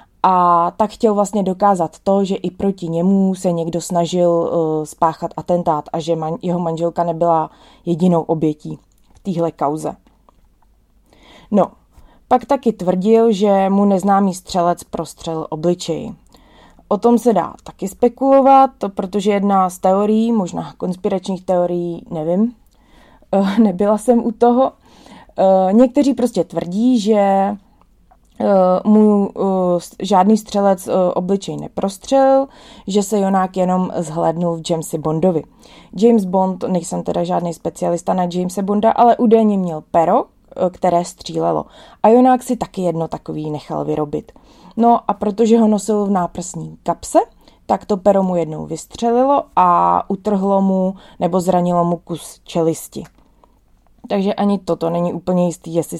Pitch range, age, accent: 170-210 Hz, 20-39, native